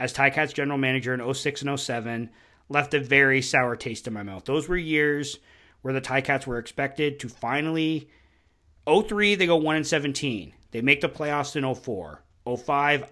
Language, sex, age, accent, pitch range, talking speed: English, male, 30-49, American, 120-150 Hz, 180 wpm